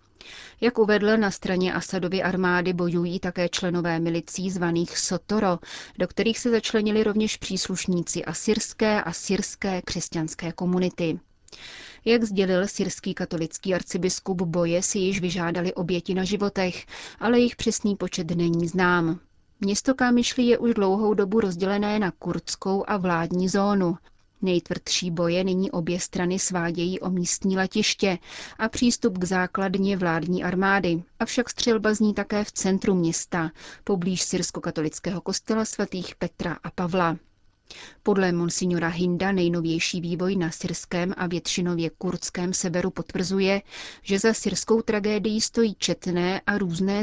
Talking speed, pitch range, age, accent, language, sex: 130 wpm, 175-200 Hz, 30-49, native, Czech, female